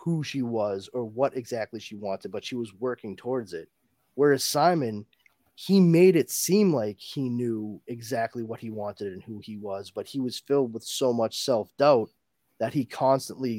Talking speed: 190 wpm